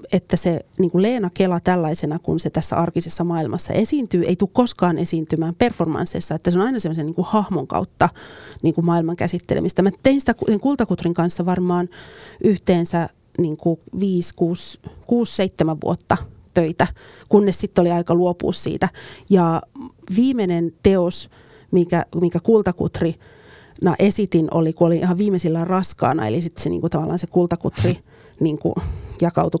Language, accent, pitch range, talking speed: Finnish, native, 170-195 Hz, 150 wpm